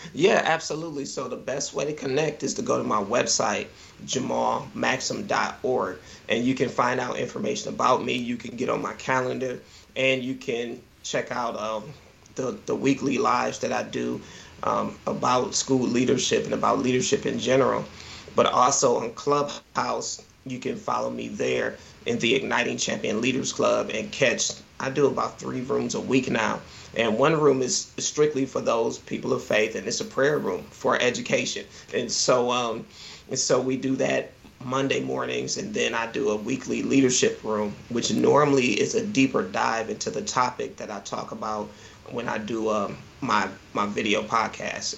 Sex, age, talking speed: male, 30-49, 175 wpm